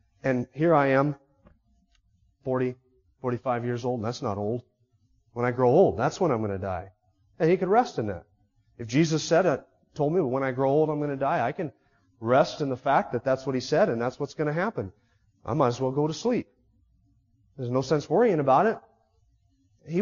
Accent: American